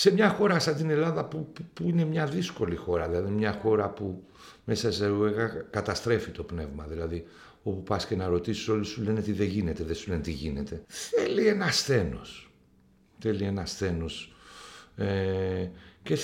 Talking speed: 175 wpm